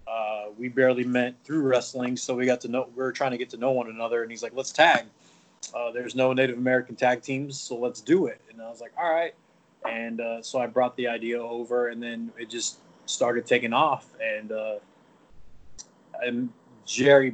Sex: male